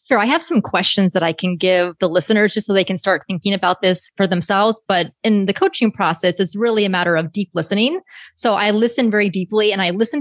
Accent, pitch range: American, 185-225 Hz